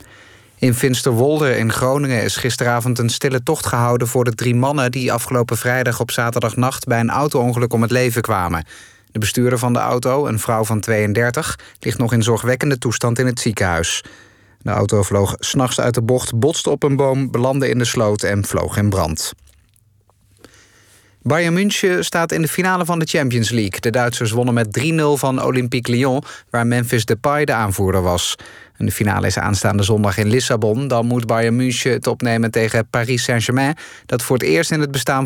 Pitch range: 110-130 Hz